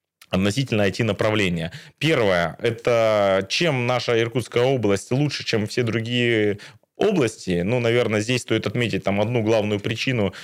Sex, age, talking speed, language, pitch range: male, 20-39, 130 wpm, Russian, 100-125 Hz